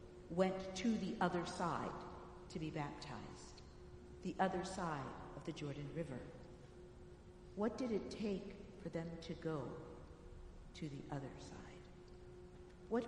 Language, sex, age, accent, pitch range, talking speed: English, female, 60-79, American, 150-195 Hz, 130 wpm